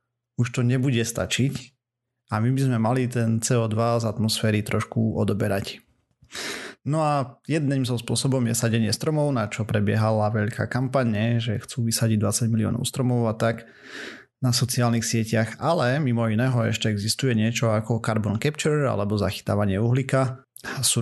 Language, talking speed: Slovak, 150 wpm